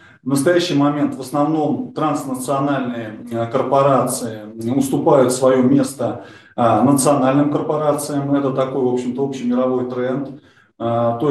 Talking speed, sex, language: 100 wpm, male, Russian